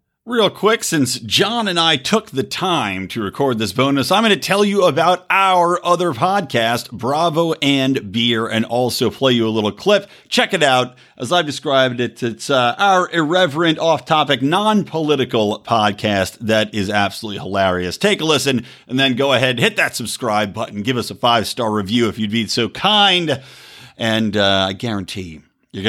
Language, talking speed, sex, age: English, 180 wpm, male, 50-69